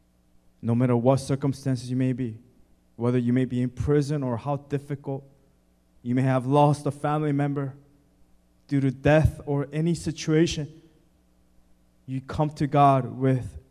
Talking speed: 150 wpm